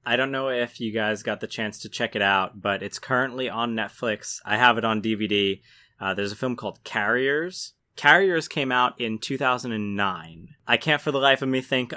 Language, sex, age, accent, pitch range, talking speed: English, male, 20-39, American, 110-130 Hz, 210 wpm